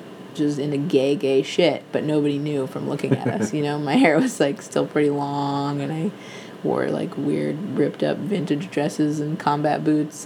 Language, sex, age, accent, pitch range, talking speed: English, female, 20-39, American, 145-165 Hz, 185 wpm